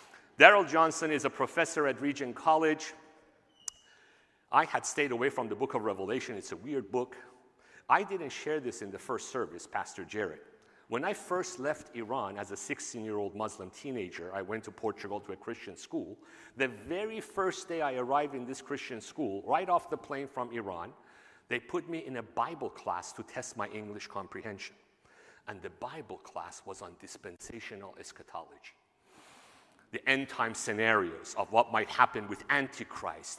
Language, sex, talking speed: English, male, 170 wpm